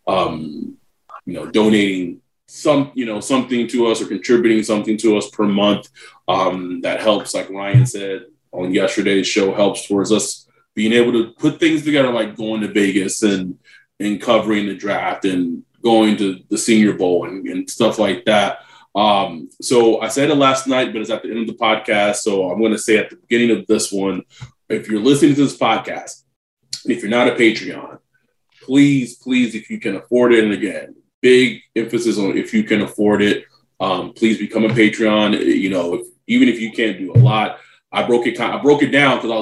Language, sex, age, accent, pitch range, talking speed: English, male, 20-39, American, 105-140 Hz, 195 wpm